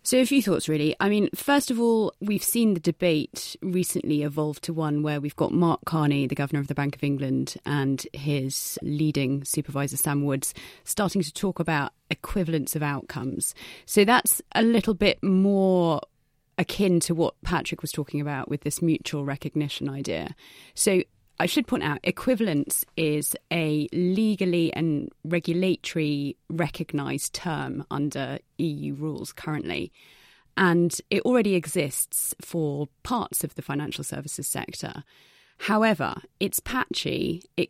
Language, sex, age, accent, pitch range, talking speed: English, female, 30-49, British, 145-180 Hz, 150 wpm